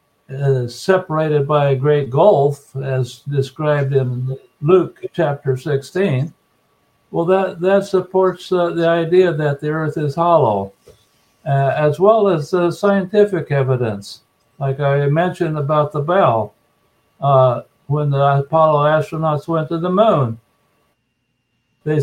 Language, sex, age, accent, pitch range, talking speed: English, male, 60-79, American, 140-170 Hz, 130 wpm